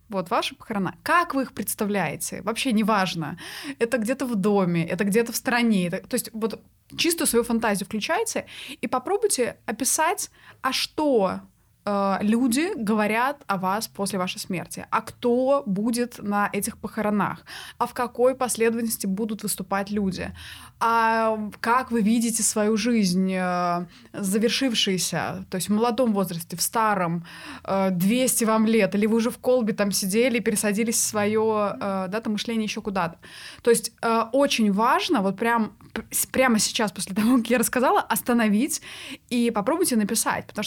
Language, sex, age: Russian, female, 20-39